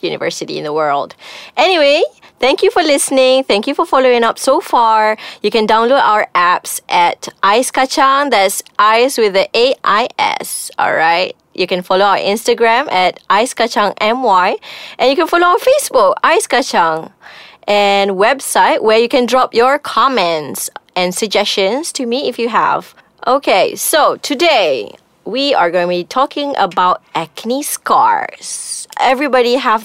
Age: 20-39